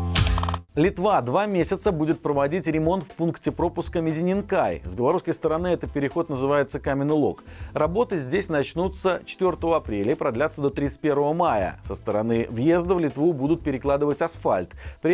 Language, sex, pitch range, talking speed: Russian, male, 130-165 Hz, 145 wpm